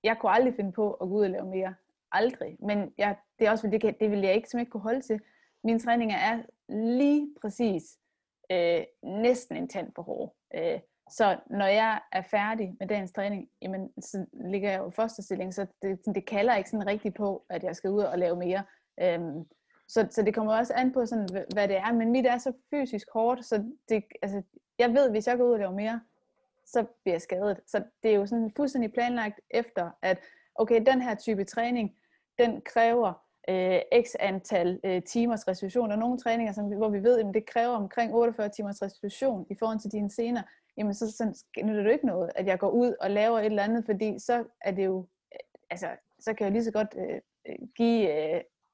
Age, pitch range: 20-39, 200-240 Hz